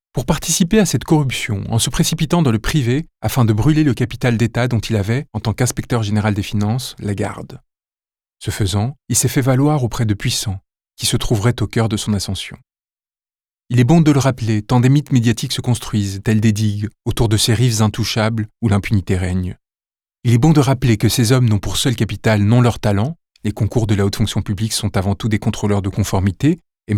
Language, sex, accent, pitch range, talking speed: French, male, French, 105-135 Hz, 220 wpm